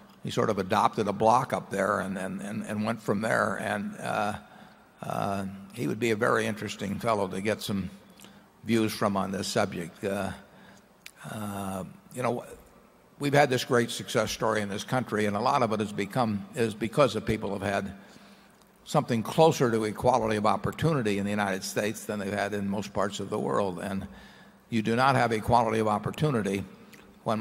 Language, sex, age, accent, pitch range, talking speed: English, male, 60-79, American, 100-115 Hz, 195 wpm